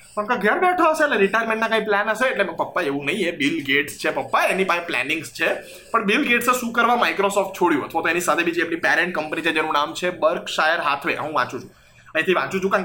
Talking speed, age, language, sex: 95 wpm, 20-39, Gujarati, male